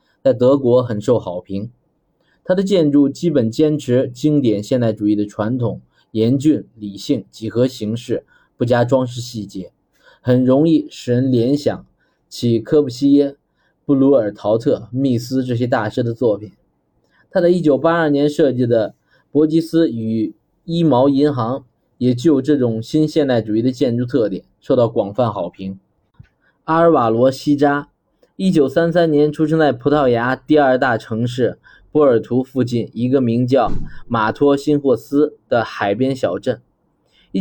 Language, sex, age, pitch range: Chinese, male, 20-39, 115-145 Hz